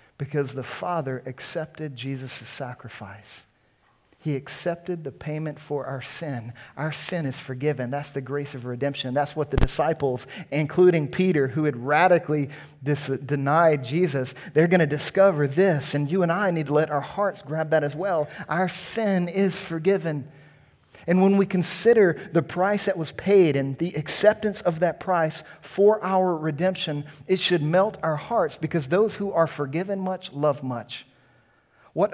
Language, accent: English, American